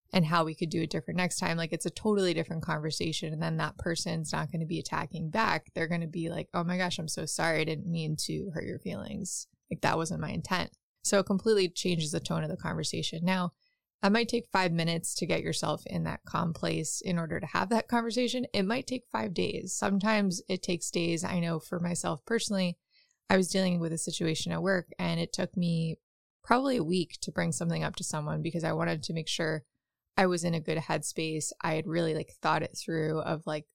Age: 20-39